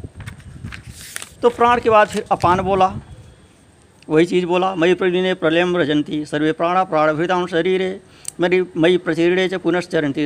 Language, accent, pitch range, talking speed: Hindi, native, 145-185 Hz, 135 wpm